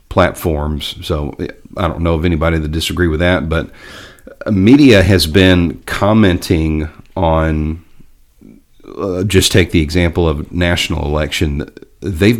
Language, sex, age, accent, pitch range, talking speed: English, male, 40-59, American, 80-95 Hz, 125 wpm